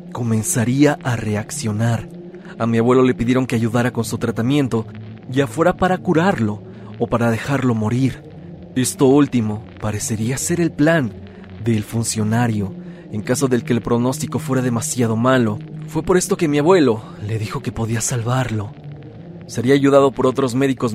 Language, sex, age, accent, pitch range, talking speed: Spanish, male, 40-59, Mexican, 115-145 Hz, 155 wpm